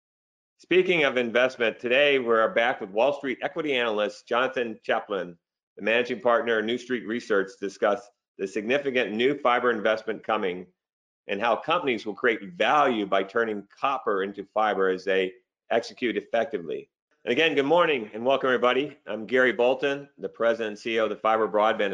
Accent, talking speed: American, 165 wpm